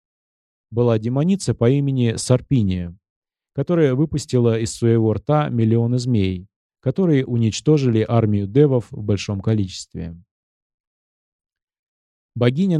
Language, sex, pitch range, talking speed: Russian, male, 105-130 Hz, 95 wpm